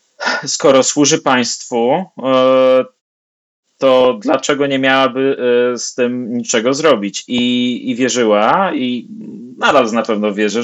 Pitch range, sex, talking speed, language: 115-140 Hz, male, 105 wpm, Polish